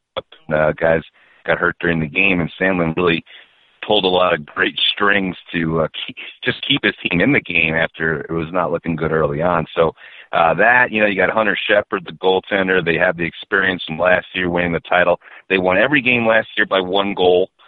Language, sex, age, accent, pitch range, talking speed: English, male, 40-59, American, 85-110 Hz, 215 wpm